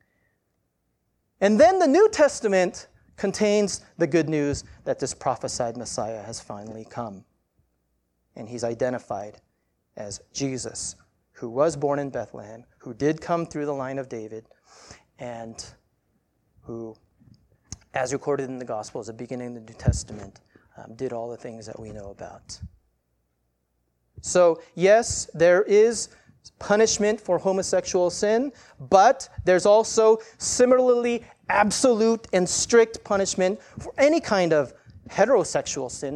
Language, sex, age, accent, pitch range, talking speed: English, male, 30-49, American, 110-185 Hz, 130 wpm